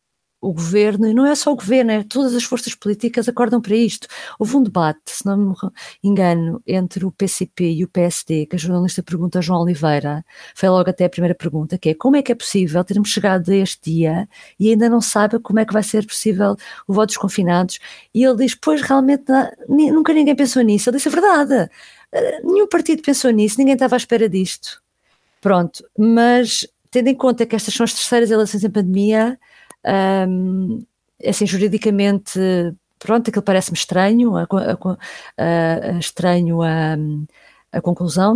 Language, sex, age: Portuguese, female, 50-69